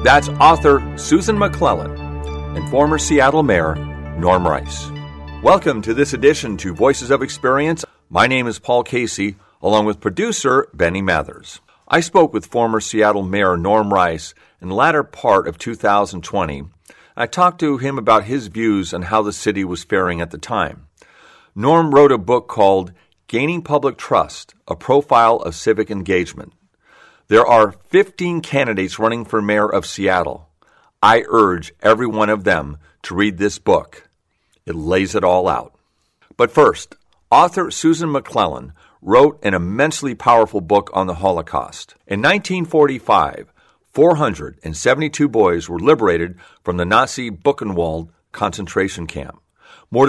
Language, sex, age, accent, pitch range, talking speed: English, male, 50-69, American, 90-135 Hz, 145 wpm